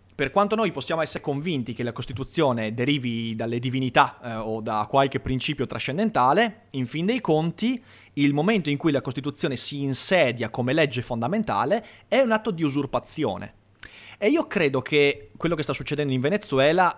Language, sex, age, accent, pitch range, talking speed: Italian, male, 30-49, native, 130-175 Hz, 170 wpm